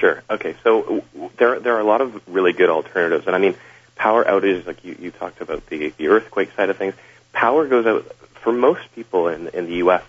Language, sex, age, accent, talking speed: English, male, 30-49, American, 225 wpm